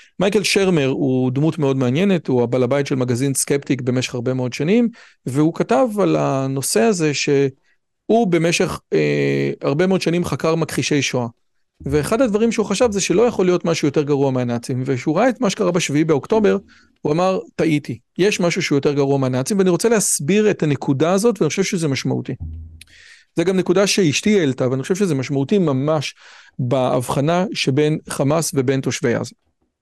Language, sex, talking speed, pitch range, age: Hebrew, male, 150 wpm, 135-180 Hz, 40-59